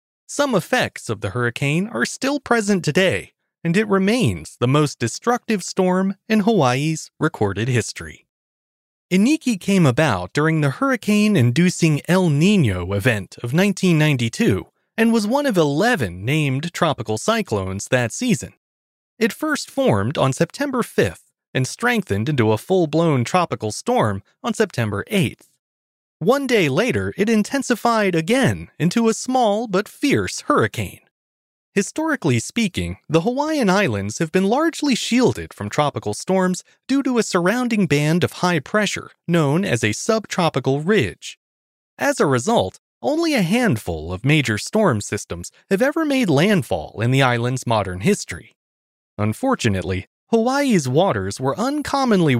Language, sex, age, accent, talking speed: English, male, 30-49, American, 135 wpm